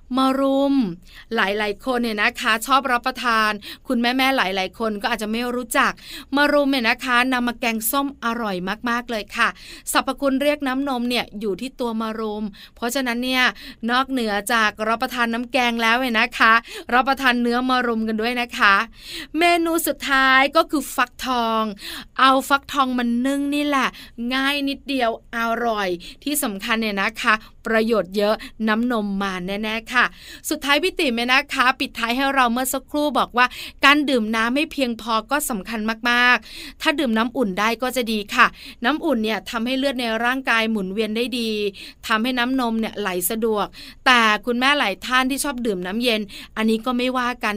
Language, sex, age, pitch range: Thai, female, 20-39, 220-265 Hz